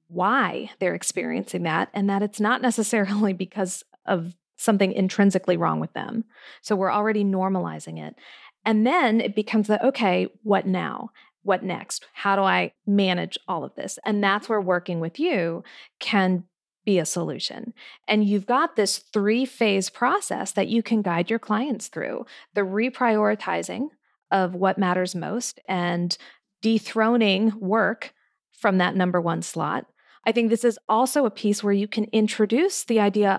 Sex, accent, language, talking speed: female, American, English, 160 wpm